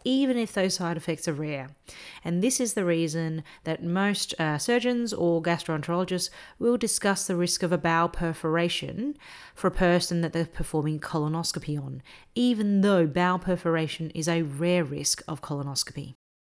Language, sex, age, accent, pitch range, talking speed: English, female, 30-49, Australian, 165-200 Hz, 160 wpm